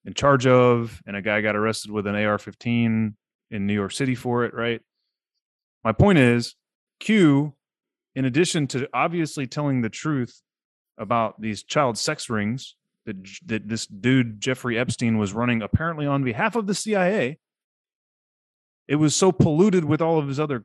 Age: 30-49